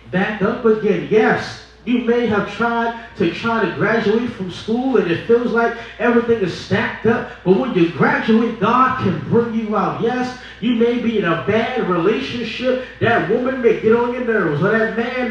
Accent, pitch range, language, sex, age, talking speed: American, 200-250 Hz, English, male, 20-39, 190 wpm